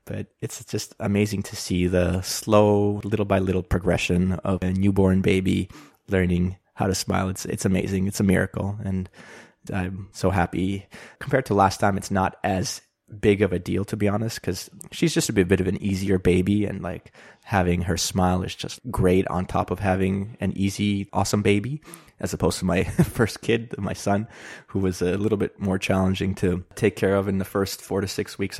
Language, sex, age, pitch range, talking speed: English, male, 20-39, 95-110 Hz, 200 wpm